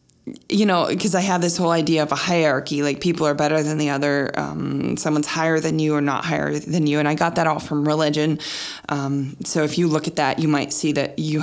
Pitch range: 150-175 Hz